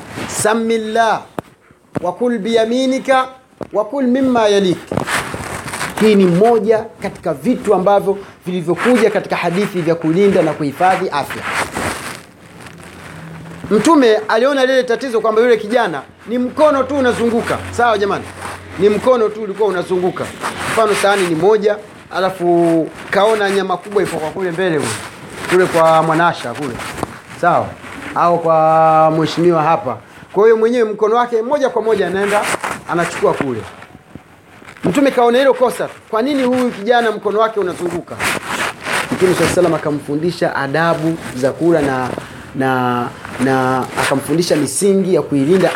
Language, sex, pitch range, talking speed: Swahili, male, 165-230 Hz, 125 wpm